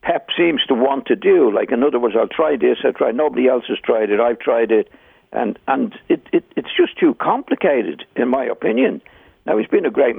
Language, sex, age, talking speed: English, male, 60-79, 230 wpm